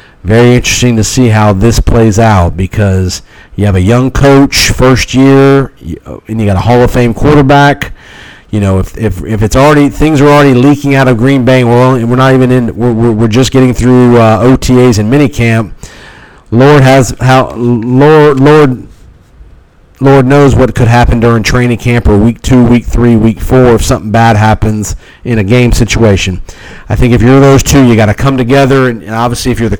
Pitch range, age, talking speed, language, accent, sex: 105-130 Hz, 40-59, 195 wpm, English, American, male